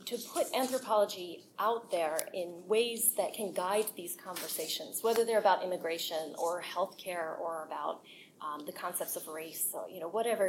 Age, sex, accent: 20-39, female, American